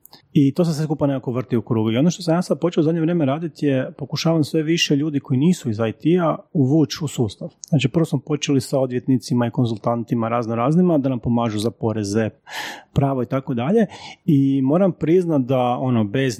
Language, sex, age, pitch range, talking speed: Croatian, male, 40-59, 125-160 Hz, 210 wpm